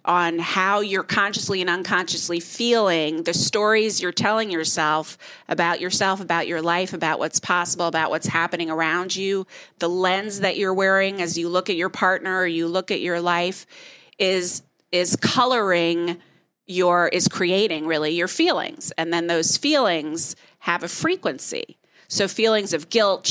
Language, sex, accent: English, female, American